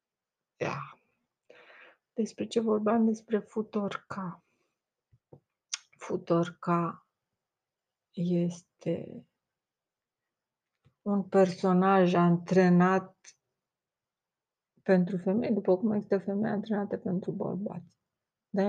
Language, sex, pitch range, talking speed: Romanian, female, 175-205 Hz, 65 wpm